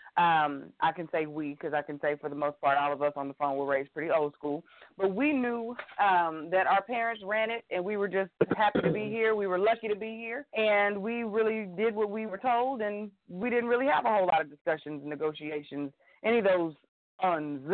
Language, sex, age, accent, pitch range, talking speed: English, female, 30-49, American, 175-230 Hz, 240 wpm